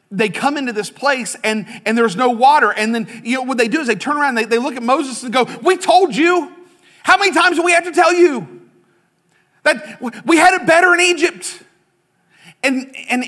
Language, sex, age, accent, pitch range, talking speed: English, male, 40-59, American, 240-310 Hz, 225 wpm